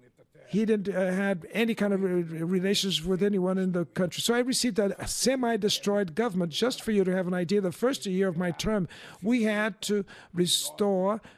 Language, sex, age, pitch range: English, male, 60-79, 185-210 Hz